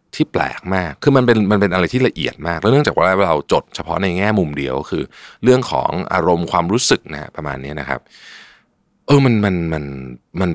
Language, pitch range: Thai, 75-110 Hz